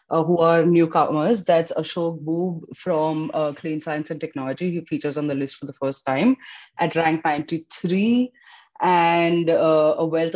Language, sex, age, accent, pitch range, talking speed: English, female, 30-49, Indian, 155-185 Hz, 170 wpm